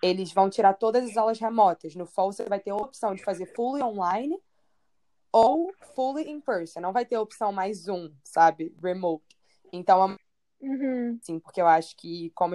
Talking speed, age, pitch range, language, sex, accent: 180 wpm, 20-39, 185-225 Hz, Portuguese, female, Brazilian